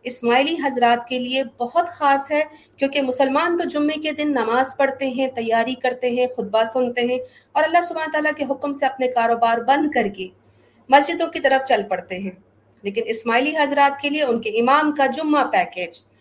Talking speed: 190 wpm